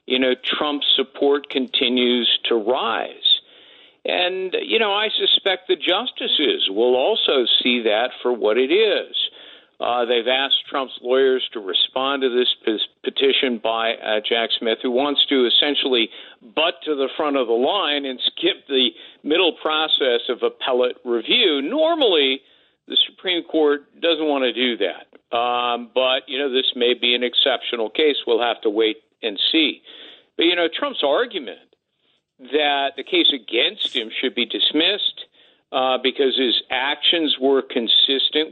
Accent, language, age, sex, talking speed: American, English, 50-69, male, 155 wpm